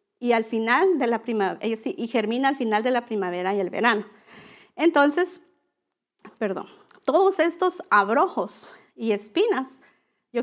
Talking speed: 140 wpm